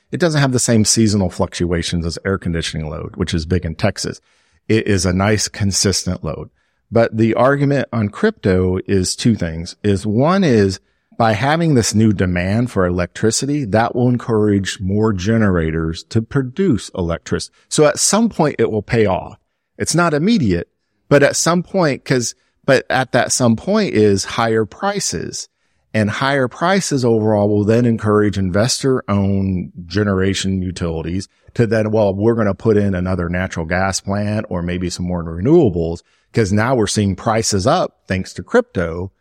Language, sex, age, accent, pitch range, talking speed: English, male, 50-69, American, 95-130 Hz, 165 wpm